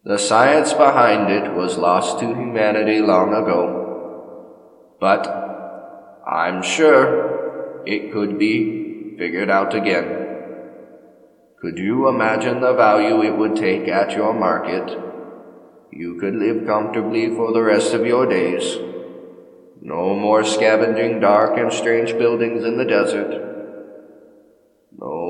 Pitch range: 100-115 Hz